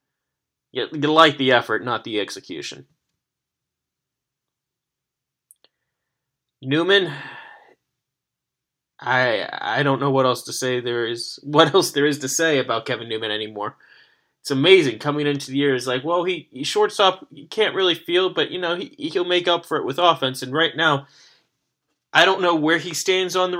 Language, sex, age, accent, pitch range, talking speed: English, male, 20-39, American, 130-160 Hz, 175 wpm